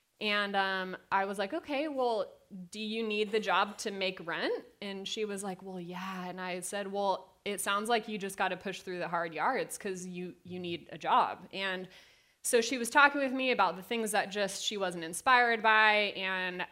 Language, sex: English, female